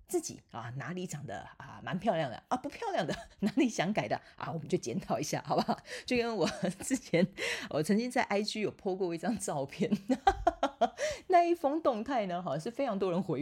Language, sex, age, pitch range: Chinese, female, 30-49, 165-270 Hz